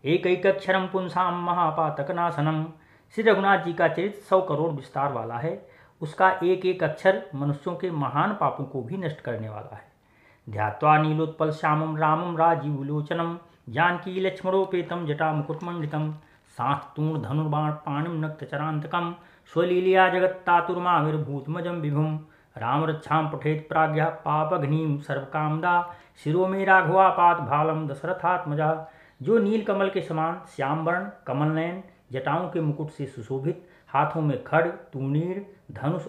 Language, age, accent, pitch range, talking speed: Hindi, 40-59, native, 145-175 Hz, 110 wpm